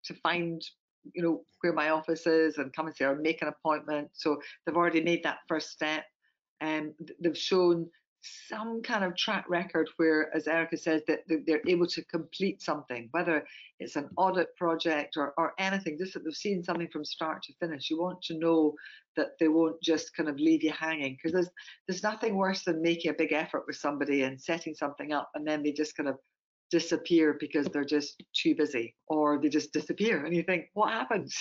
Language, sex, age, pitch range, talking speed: English, female, 60-79, 150-185 Hz, 210 wpm